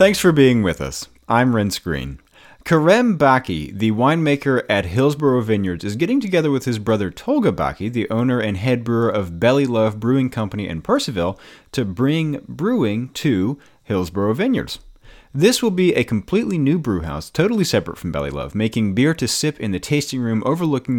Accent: American